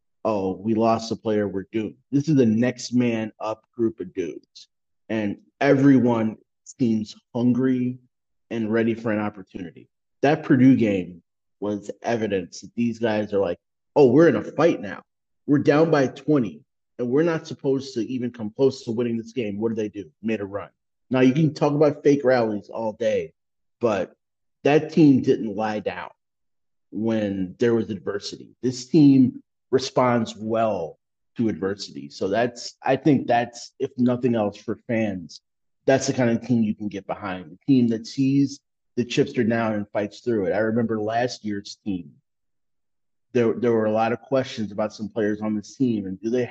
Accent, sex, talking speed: American, male, 180 wpm